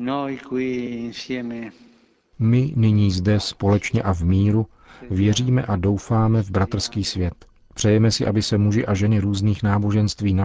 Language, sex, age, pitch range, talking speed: Czech, male, 40-59, 95-105 Hz, 130 wpm